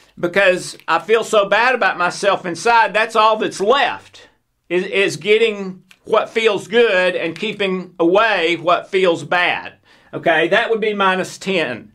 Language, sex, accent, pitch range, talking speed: English, male, American, 175-225 Hz, 150 wpm